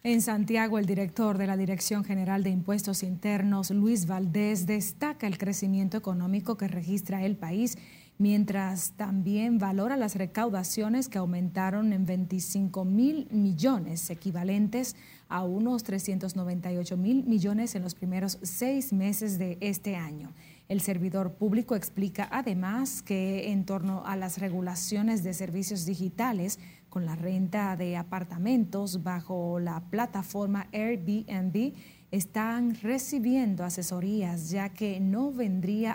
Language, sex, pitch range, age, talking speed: Spanish, female, 185-220 Hz, 30-49, 125 wpm